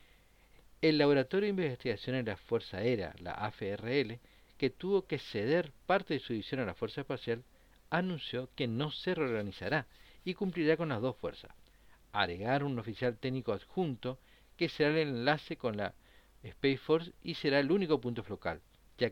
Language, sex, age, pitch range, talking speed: Spanish, male, 50-69, 100-150 Hz, 165 wpm